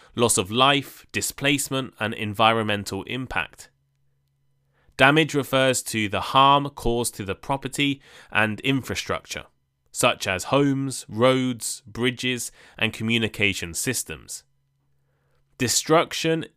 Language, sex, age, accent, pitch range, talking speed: English, male, 20-39, British, 95-130 Hz, 100 wpm